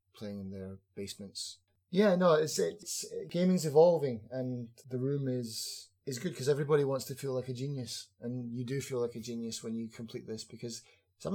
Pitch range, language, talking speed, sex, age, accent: 105-135 Hz, English, 200 wpm, male, 20-39, British